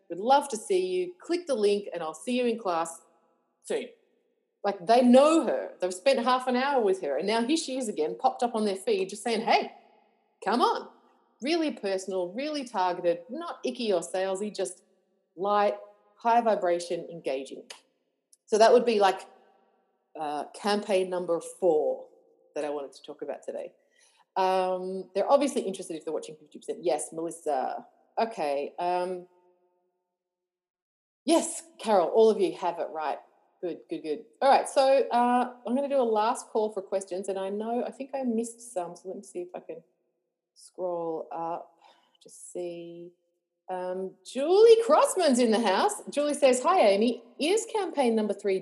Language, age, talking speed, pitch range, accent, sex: English, 30-49, 170 wpm, 180-255 Hz, Australian, female